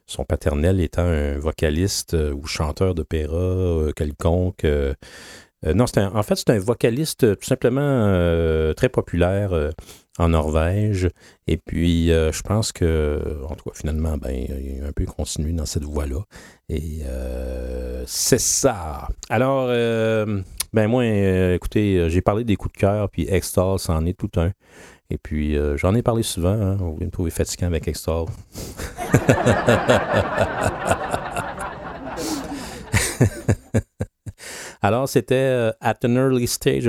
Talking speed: 140 wpm